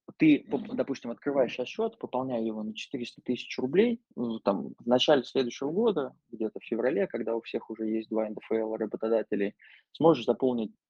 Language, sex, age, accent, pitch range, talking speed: Russian, male, 20-39, native, 110-130 Hz, 160 wpm